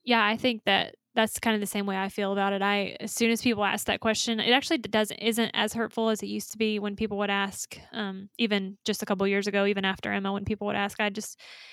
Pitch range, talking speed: 200-225 Hz, 275 wpm